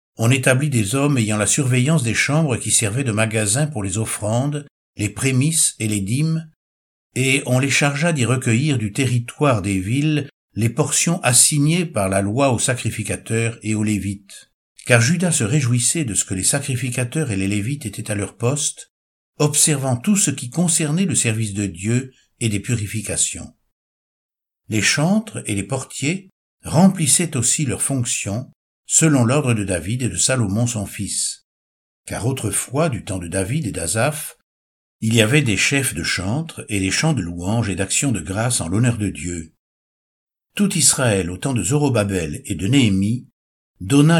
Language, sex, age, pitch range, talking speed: French, male, 60-79, 100-145 Hz, 170 wpm